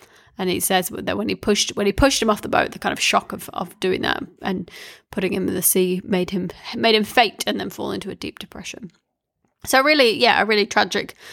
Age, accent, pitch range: 20-39, British, 200-225 Hz